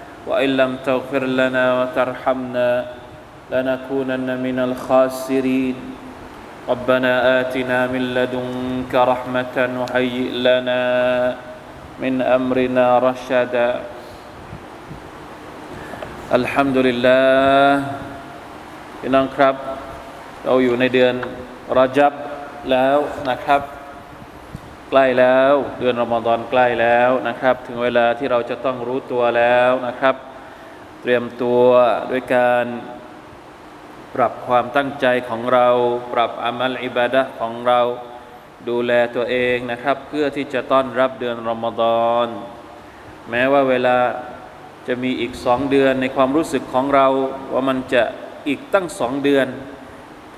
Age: 20-39